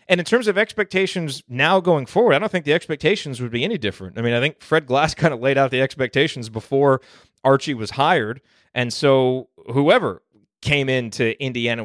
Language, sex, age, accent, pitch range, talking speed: English, male, 30-49, American, 115-145 Hz, 200 wpm